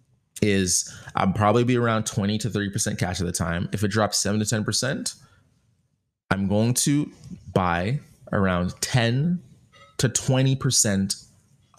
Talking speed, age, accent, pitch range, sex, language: 130 wpm, 20-39, American, 100-125 Hz, male, English